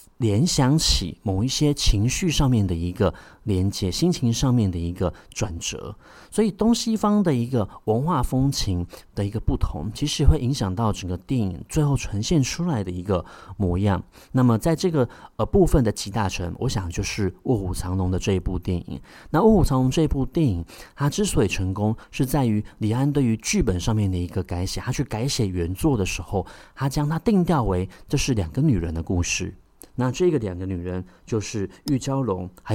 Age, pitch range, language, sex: 30-49, 95-135 Hz, Chinese, male